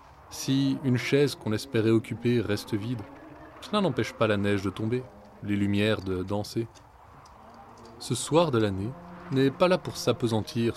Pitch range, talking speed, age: 105-135 Hz, 155 wpm, 20-39